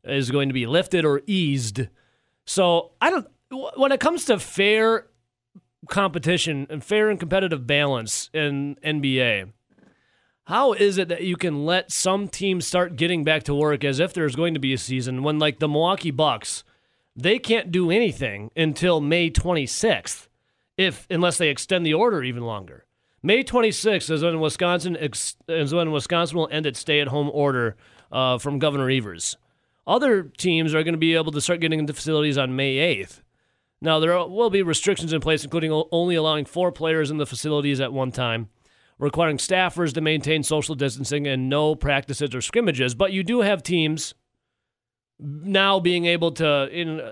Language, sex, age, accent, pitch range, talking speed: English, male, 30-49, American, 140-180 Hz, 175 wpm